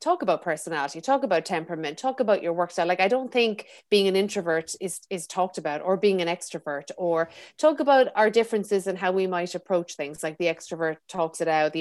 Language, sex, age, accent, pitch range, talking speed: English, female, 30-49, Irish, 170-205 Hz, 225 wpm